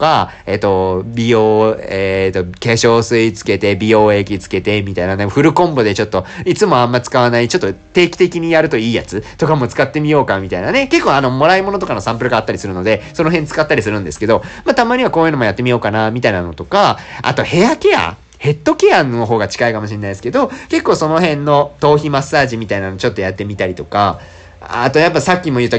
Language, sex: Japanese, male